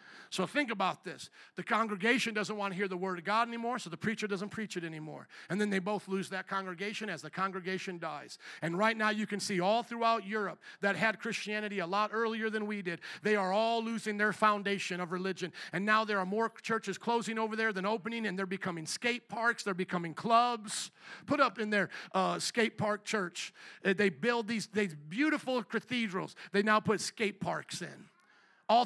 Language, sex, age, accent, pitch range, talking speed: English, male, 50-69, American, 185-225 Hz, 205 wpm